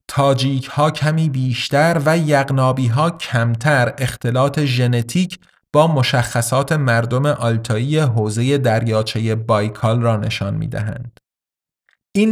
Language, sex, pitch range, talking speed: Persian, male, 115-150 Hz, 100 wpm